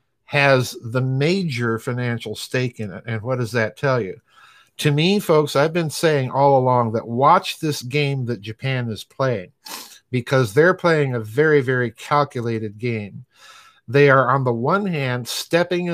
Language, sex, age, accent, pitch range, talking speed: English, male, 50-69, American, 115-145 Hz, 165 wpm